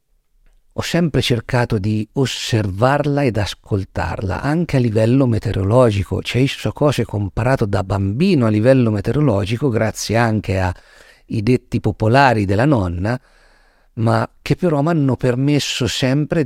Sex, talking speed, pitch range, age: male, 125 wpm, 100-135 Hz, 50-69